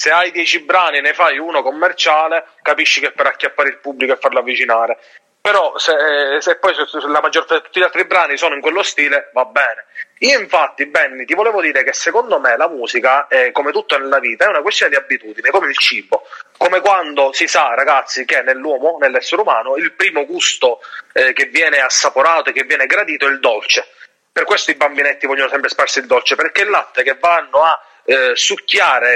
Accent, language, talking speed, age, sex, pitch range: native, Italian, 210 wpm, 30-49, male, 145-205 Hz